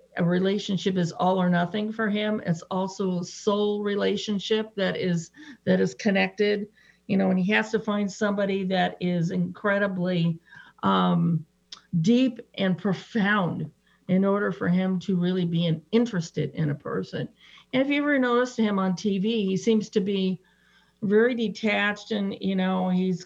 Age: 50-69